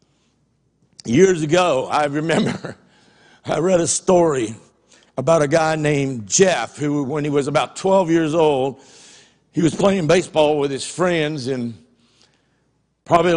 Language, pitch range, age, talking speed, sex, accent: English, 145-190 Hz, 60-79, 135 wpm, male, American